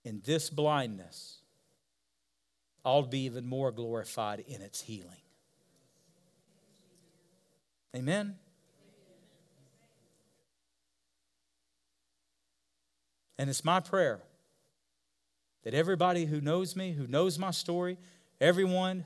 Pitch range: 105-170 Hz